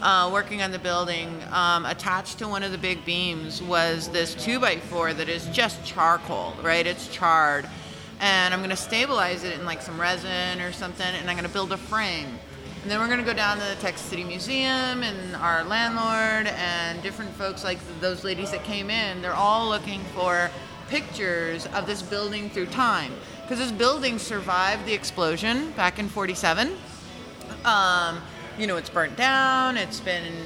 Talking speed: 180 wpm